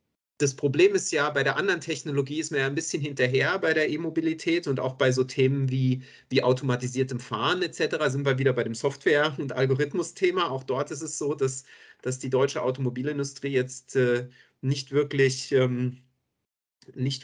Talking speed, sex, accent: 170 wpm, male, German